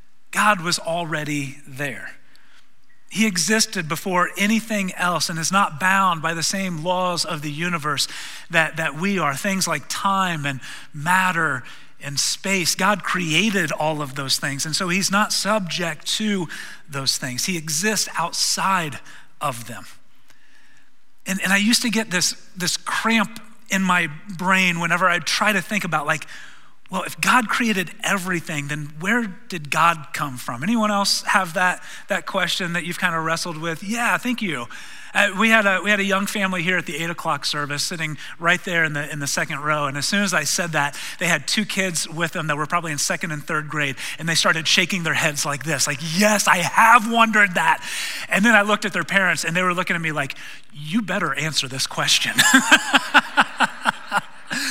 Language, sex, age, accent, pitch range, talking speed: English, male, 30-49, American, 155-200 Hz, 190 wpm